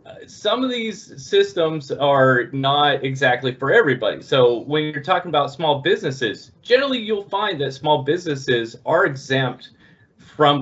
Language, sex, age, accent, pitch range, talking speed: English, male, 30-49, American, 120-145 Hz, 140 wpm